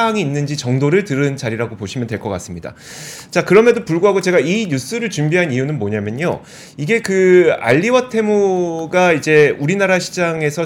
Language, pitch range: Korean, 135-195 Hz